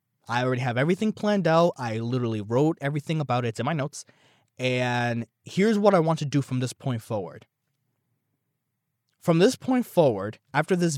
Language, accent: English, American